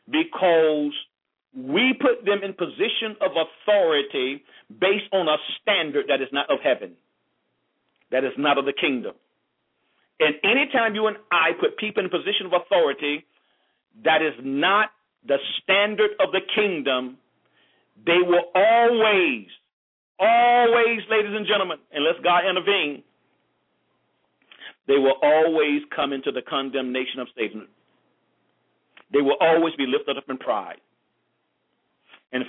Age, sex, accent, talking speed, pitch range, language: 50-69, male, American, 130 wpm, 135-215 Hz, English